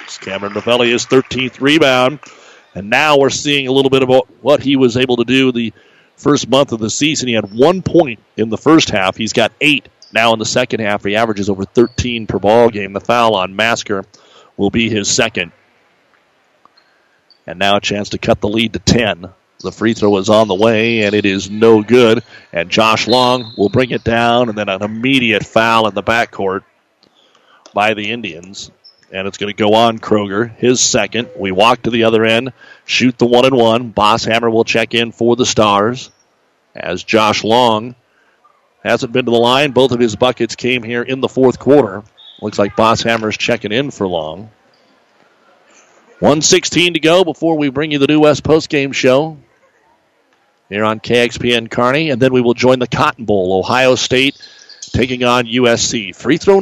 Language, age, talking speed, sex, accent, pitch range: English, 40-59, 190 wpm, male, American, 110-130 Hz